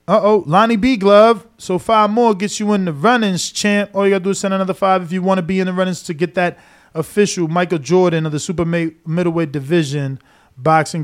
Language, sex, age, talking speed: English, male, 20-39, 235 wpm